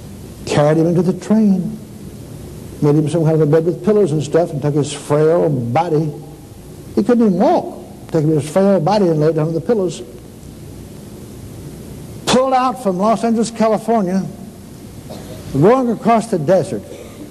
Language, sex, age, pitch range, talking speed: English, male, 60-79, 145-205 Hz, 155 wpm